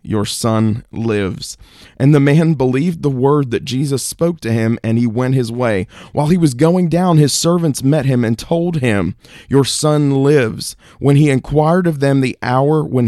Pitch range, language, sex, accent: 115-140 Hz, English, male, American